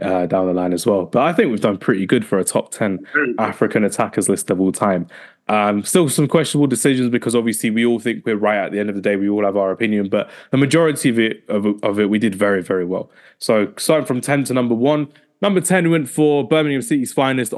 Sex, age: male, 20-39